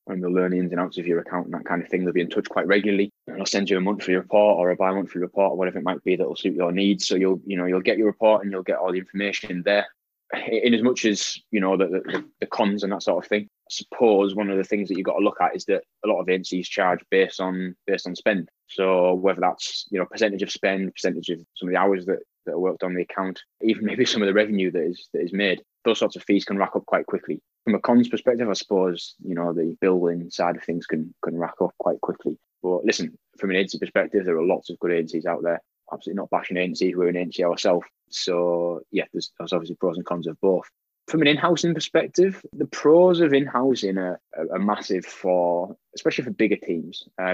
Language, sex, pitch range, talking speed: English, male, 90-100 Hz, 255 wpm